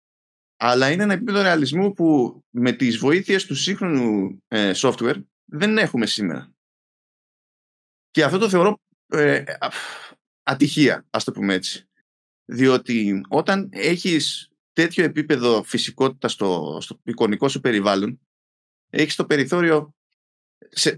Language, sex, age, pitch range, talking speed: Greek, male, 20-39, 120-165 Hz, 120 wpm